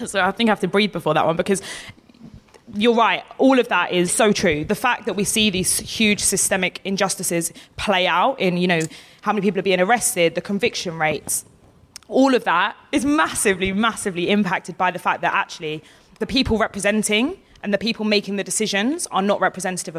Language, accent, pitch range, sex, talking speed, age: English, British, 175-225 Hz, female, 200 wpm, 20-39